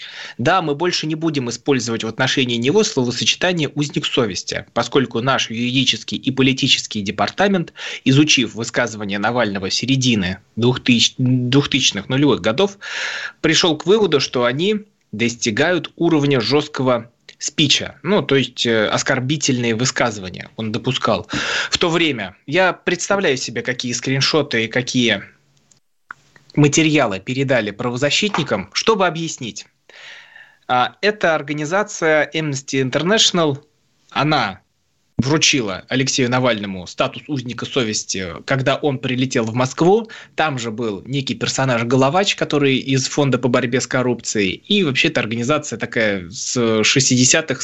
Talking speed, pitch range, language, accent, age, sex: 120 wpm, 120-155 Hz, Russian, native, 20-39, male